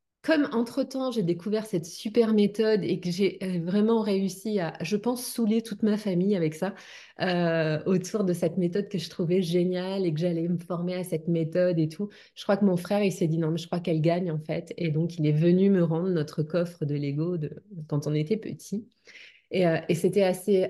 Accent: French